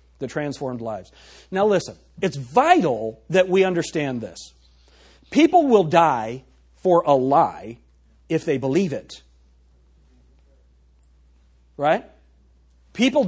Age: 40-59